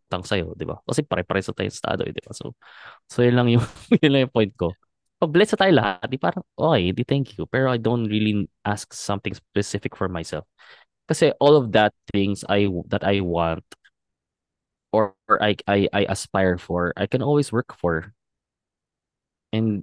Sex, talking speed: male, 190 wpm